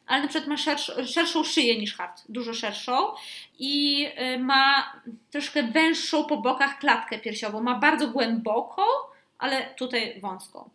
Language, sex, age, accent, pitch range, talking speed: Polish, female, 20-39, native, 235-300 Hz, 135 wpm